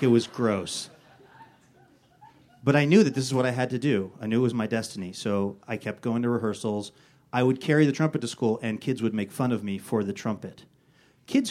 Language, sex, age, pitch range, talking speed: English, male, 30-49, 110-135 Hz, 230 wpm